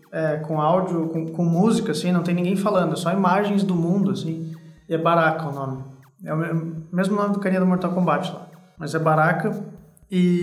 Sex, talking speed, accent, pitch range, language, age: male, 215 wpm, Brazilian, 165-195 Hz, Portuguese, 20-39